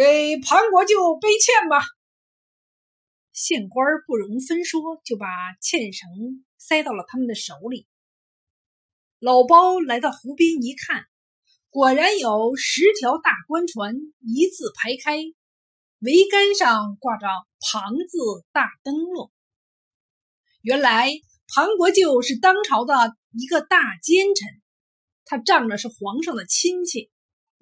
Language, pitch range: Chinese, 230-355 Hz